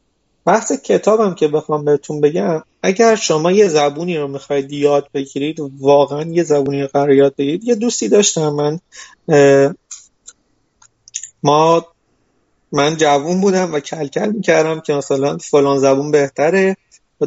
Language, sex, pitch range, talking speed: Persian, male, 140-185 Hz, 130 wpm